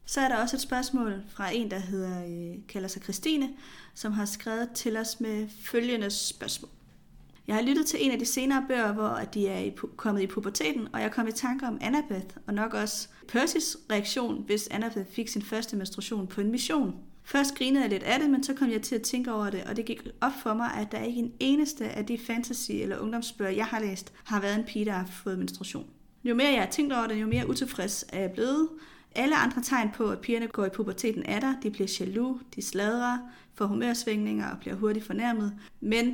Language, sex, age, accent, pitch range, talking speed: Danish, female, 30-49, native, 205-245 Hz, 220 wpm